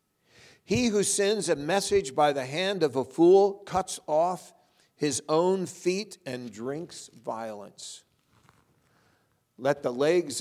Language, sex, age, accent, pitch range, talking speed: English, male, 50-69, American, 125-165 Hz, 125 wpm